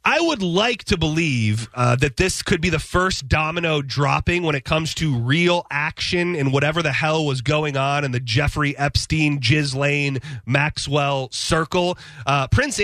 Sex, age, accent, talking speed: male, 30-49, American, 170 wpm